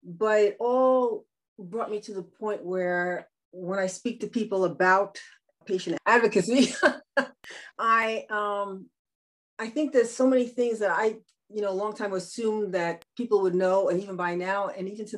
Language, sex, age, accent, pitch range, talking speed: English, female, 30-49, American, 185-225 Hz, 175 wpm